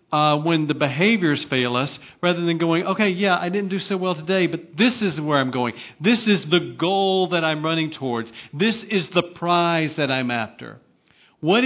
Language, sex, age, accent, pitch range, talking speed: English, male, 40-59, American, 150-195 Hz, 200 wpm